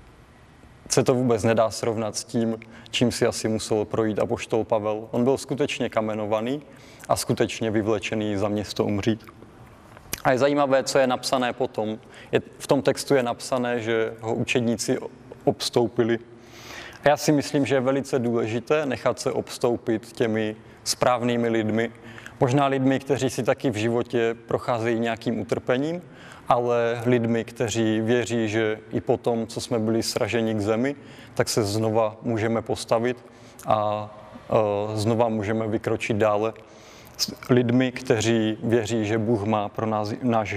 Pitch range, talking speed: 110-125 Hz, 145 wpm